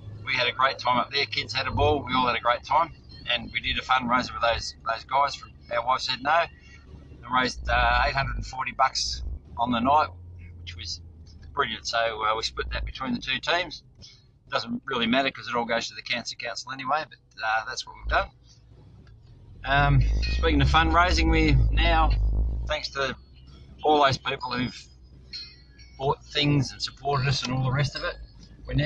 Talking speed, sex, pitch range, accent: 195 wpm, male, 80-130 Hz, Australian